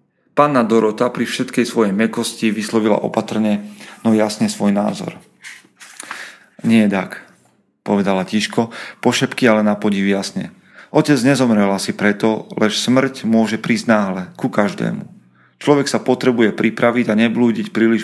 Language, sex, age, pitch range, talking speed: Slovak, male, 40-59, 110-140 Hz, 130 wpm